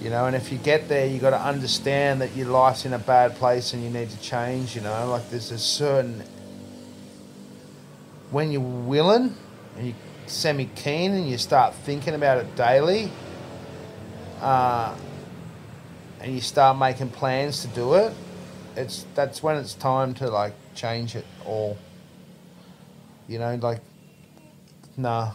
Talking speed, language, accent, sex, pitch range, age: 155 wpm, English, Australian, male, 115-150 Hz, 30-49